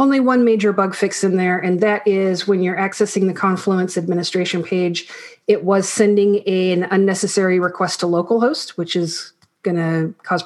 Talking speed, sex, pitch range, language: 165 wpm, female, 175-210 Hz, English